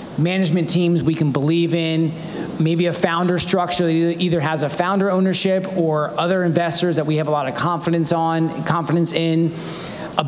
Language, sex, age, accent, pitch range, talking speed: English, male, 40-59, American, 150-175 Hz, 175 wpm